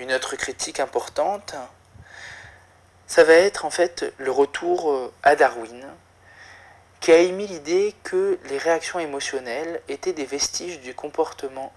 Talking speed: 135 wpm